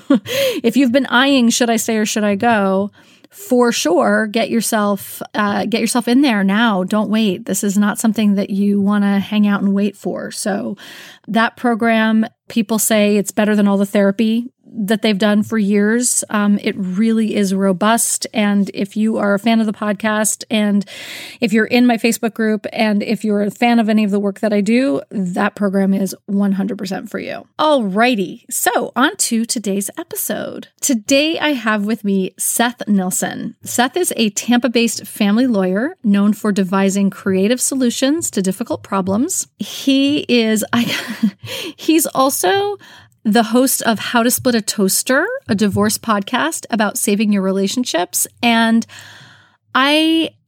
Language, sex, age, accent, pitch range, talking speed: English, female, 30-49, American, 205-240 Hz, 170 wpm